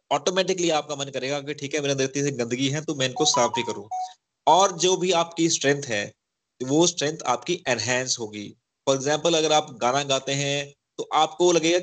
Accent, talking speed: native, 195 wpm